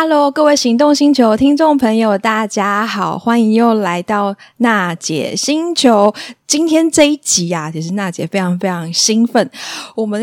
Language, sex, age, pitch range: Chinese, female, 20-39, 175-250 Hz